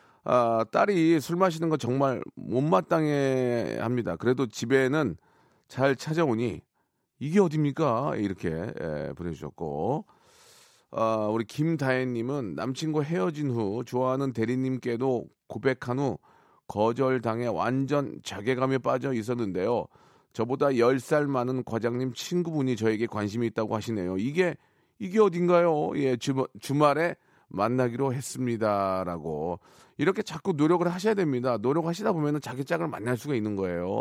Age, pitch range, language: 40-59, 115-155 Hz, Korean